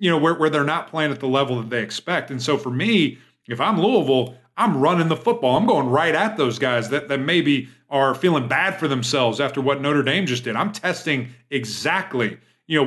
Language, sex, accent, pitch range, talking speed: English, male, American, 130-165 Hz, 230 wpm